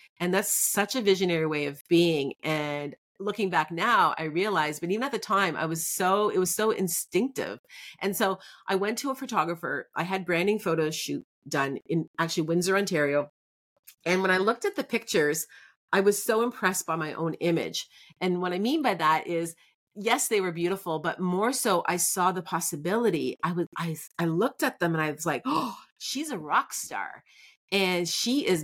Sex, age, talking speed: female, 30-49, 200 wpm